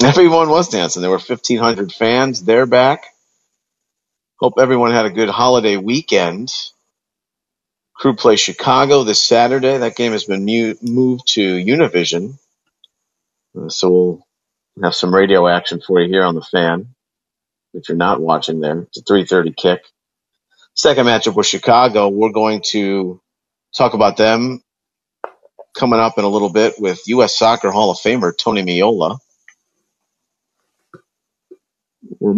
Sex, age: male, 40-59